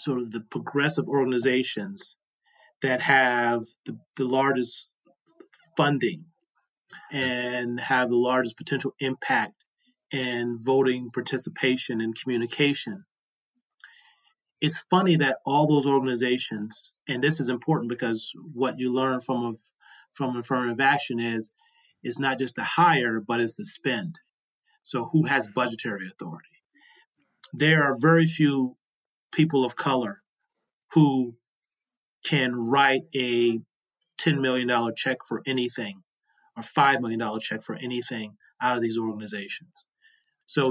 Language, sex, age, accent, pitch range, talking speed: English, male, 30-49, American, 120-145 Hz, 125 wpm